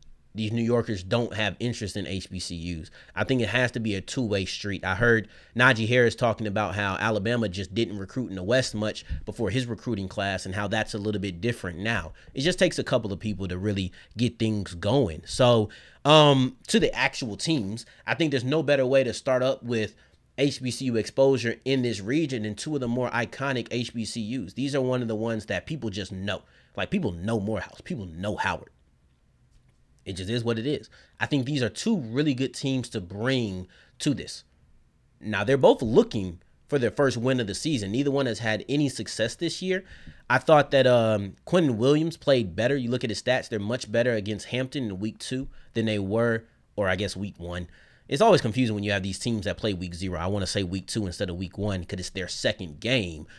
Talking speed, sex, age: 220 wpm, male, 30-49